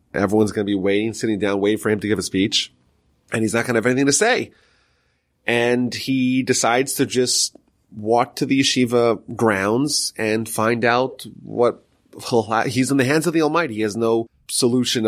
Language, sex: English, male